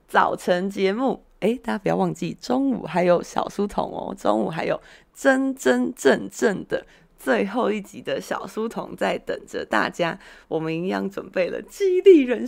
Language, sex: Chinese, female